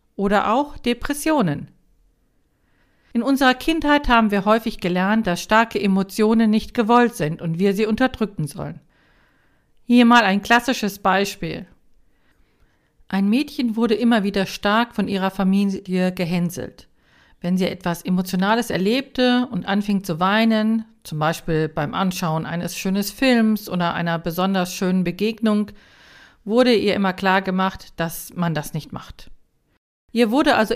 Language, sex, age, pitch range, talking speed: German, female, 50-69, 185-240 Hz, 135 wpm